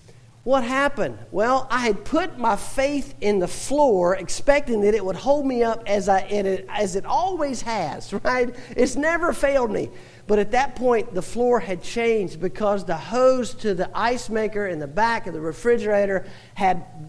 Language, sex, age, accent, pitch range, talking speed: English, male, 50-69, American, 140-210 Hz, 180 wpm